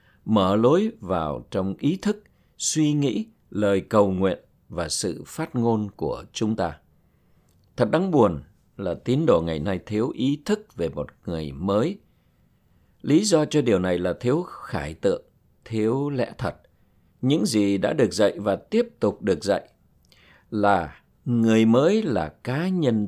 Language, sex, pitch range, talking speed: Vietnamese, male, 90-130 Hz, 160 wpm